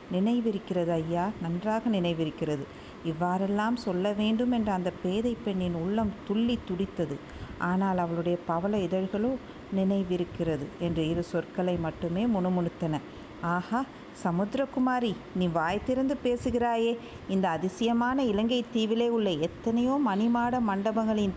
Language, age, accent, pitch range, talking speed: Tamil, 50-69, native, 185-235 Hz, 105 wpm